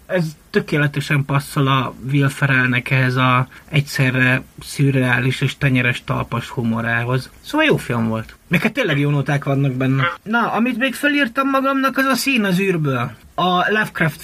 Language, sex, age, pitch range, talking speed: Hungarian, male, 30-49, 140-190 Hz, 150 wpm